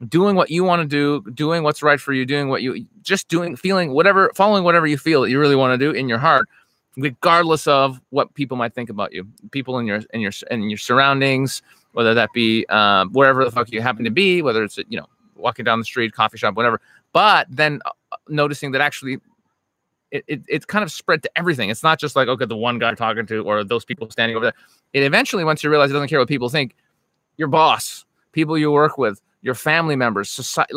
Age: 30-49